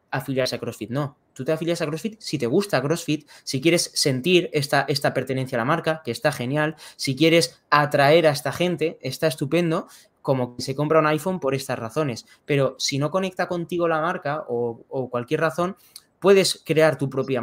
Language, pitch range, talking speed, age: Spanish, 130-155 Hz, 195 wpm, 20-39